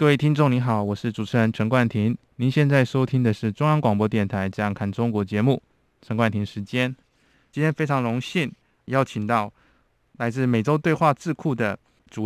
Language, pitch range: Chinese, 105-130 Hz